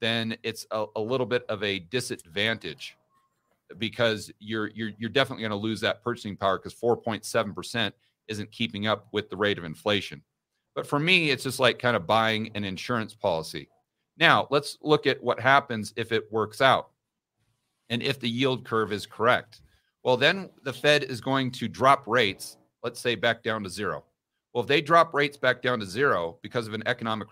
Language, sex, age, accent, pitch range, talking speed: English, male, 40-59, American, 110-130 Hz, 190 wpm